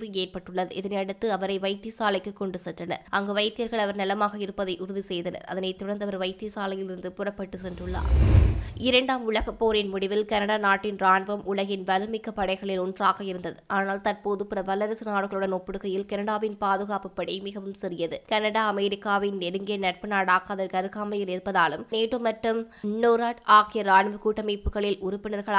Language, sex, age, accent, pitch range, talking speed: English, female, 20-39, Indian, 185-205 Hz, 115 wpm